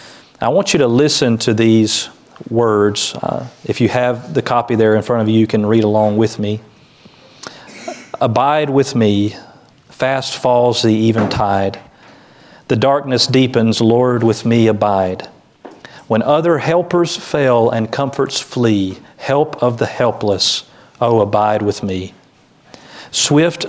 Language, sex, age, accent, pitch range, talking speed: English, male, 40-59, American, 105-135 Hz, 140 wpm